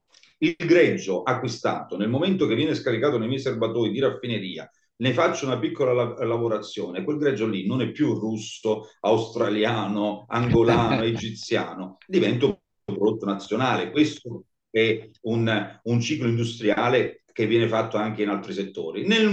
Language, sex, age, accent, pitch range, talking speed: Italian, male, 40-59, native, 115-160 Hz, 145 wpm